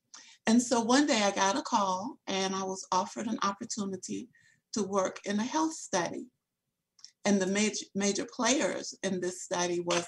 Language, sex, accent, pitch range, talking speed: English, female, American, 180-225 Hz, 175 wpm